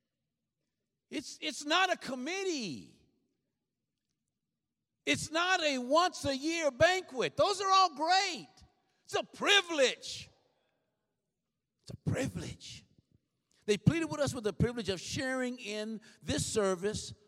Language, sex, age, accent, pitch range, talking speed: English, male, 60-79, American, 150-245 Hz, 115 wpm